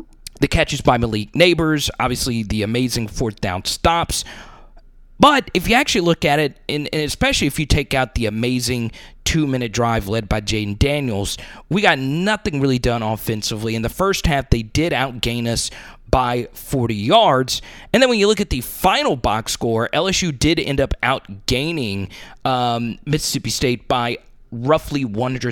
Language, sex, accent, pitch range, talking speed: English, male, American, 115-150 Hz, 160 wpm